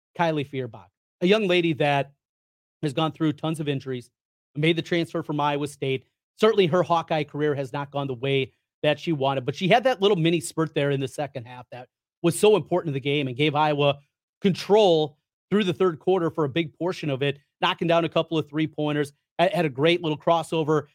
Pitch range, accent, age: 140-175 Hz, American, 30-49